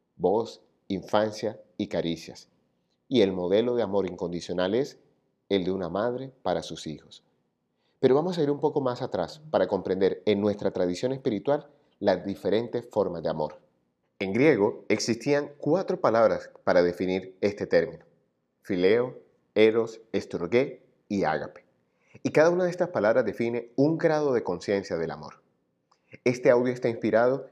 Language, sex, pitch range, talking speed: Spanish, male, 100-140 Hz, 150 wpm